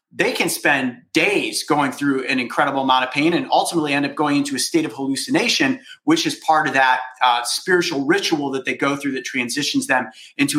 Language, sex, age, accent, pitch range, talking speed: English, male, 30-49, American, 135-195 Hz, 210 wpm